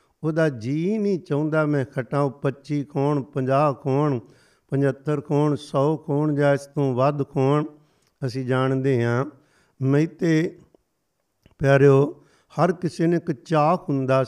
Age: 60-79